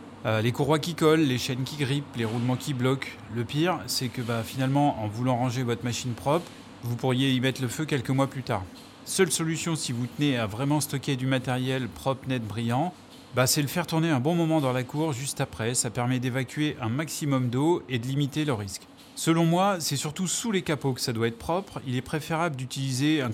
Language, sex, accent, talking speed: French, male, French, 230 wpm